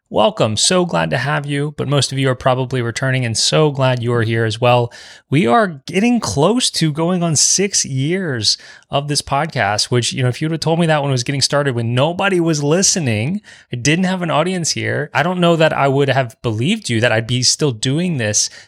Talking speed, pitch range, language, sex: 235 wpm, 125-160 Hz, English, male